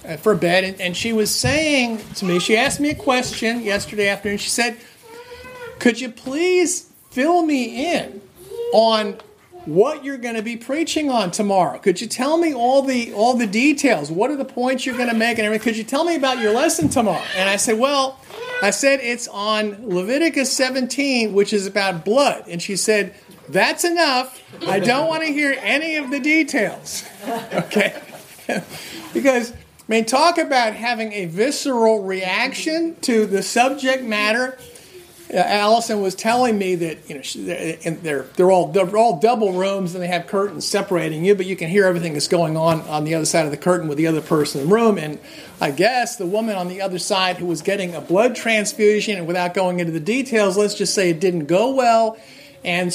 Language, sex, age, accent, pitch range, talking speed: English, male, 40-59, American, 180-255 Hz, 195 wpm